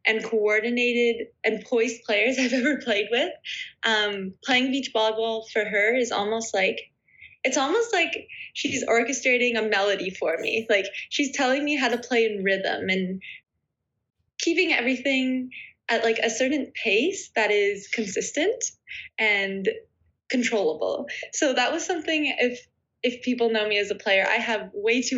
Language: English